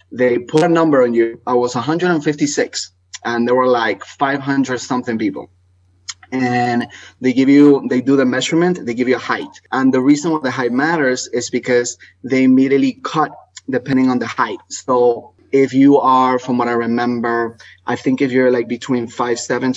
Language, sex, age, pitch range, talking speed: English, male, 20-39, 115-140 Hz, 180 wpm